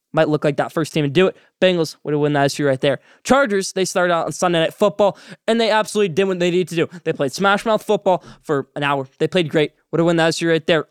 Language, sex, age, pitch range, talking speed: English, male, 20-39, 160-205 Hz, 285 wpm